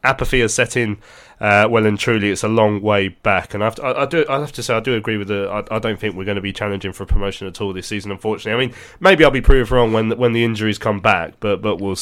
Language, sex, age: English, male, 20-39